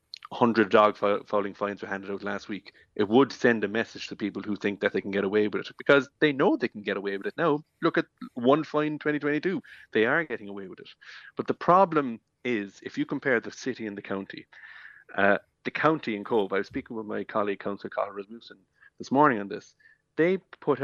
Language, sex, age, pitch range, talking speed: English, male, 30-49, 100-130 Hz, 225 wpm